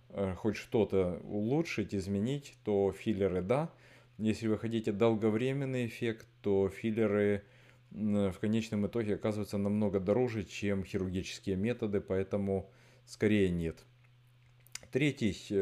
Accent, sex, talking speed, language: native, male, 105 wpm, Russian